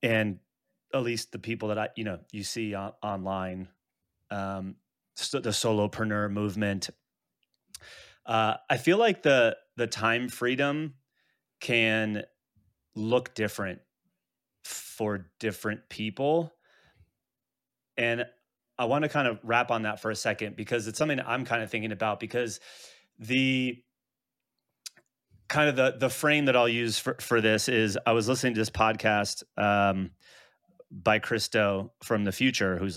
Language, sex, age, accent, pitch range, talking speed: English, male, 30-49, American, 100-120 Hz, 145 wpm